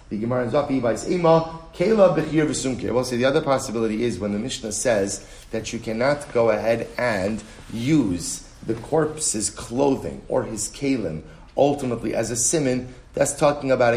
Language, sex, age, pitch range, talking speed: English, male, 30-49, 110-140 Hz, 135 wpm